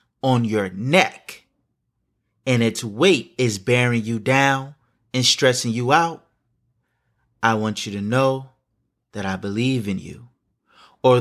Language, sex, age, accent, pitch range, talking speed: English, male, 20-39, American, 110-140 Hz, 135 wpm